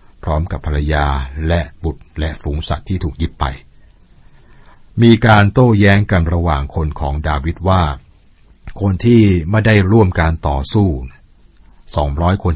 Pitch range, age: 75-95 Hz, 60-79